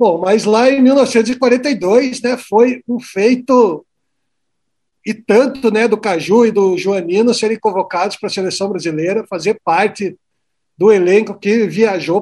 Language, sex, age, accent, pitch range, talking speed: Portuguese, male, 60-79, Brazilian, 180-235 Hz, 140 wpm